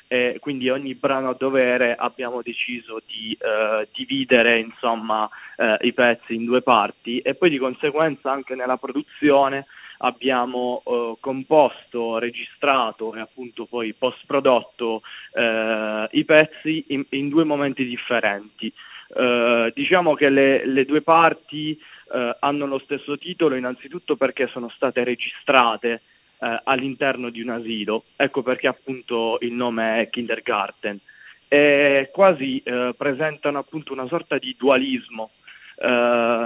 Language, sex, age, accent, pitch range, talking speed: Italian, male, 20-39, native, 120-140 Hz, 130 wpm